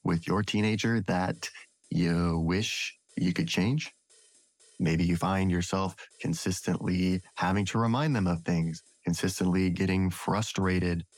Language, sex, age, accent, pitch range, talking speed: English, male, 30-49, American, 85-100 Hz, 125 wpm